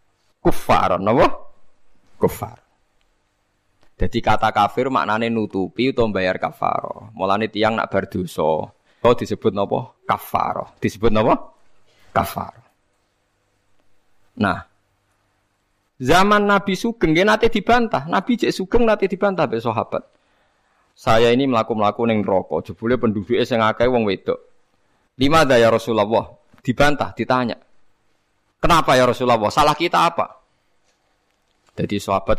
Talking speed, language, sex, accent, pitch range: 115 wpm, Indonesian, male, native, 105-150 Hz